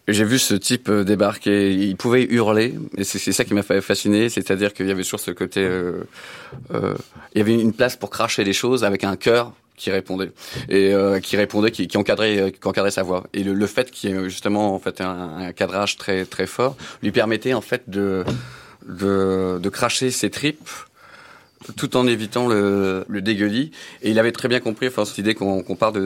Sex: male